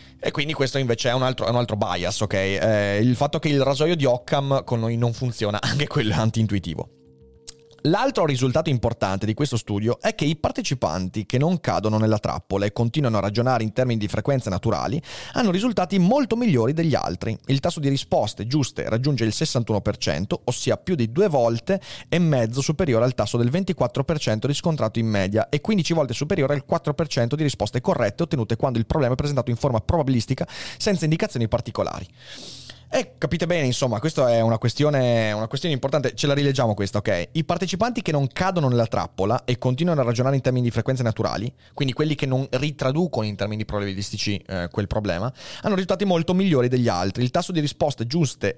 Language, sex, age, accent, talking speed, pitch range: Italian, male, 30-49, native, 195 wpm, 110-150 Hz